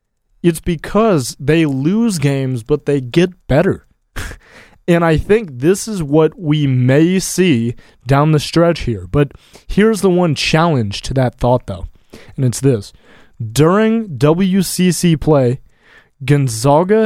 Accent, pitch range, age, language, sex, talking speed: American, 130-170 Hz, 20-39, English, male, 135 wpm